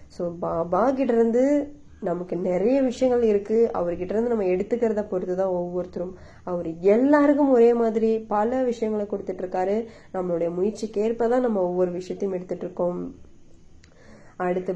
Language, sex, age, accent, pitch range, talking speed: Tamil, female, 20-39, native, 180-230 Hz, 125 wpm